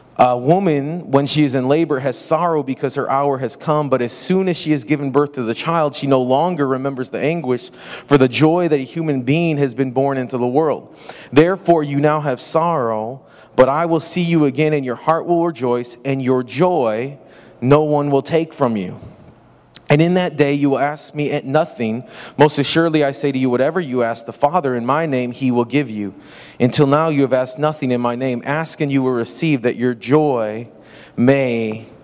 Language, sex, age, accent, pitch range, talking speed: English, male, 30-49, American, 130-150 Hz, 215 wpm